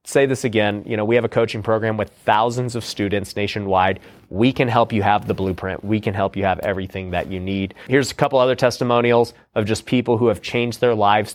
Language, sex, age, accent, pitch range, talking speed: English, male, 30-49, American, 105-125 Hz, 235 wpm